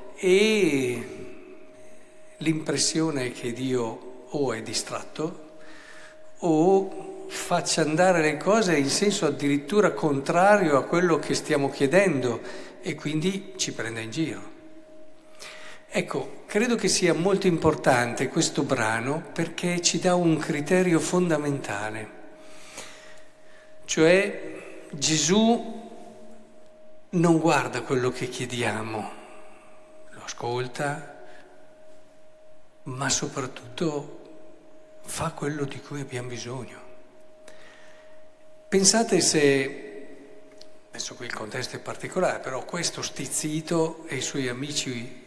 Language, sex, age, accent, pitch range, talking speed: Italian, male, 50-69, native, 140-215 Hz, 95 wpm